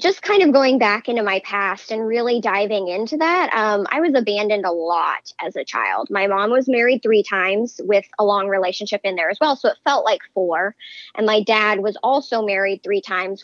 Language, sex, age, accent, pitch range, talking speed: English, male, 20-39, American, 205-260 Hz, 220 wpm